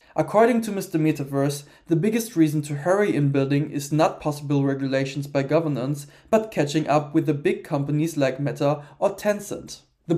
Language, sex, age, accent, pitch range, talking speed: English, male, 20-39, German, 145-175 Hz, 165 wpm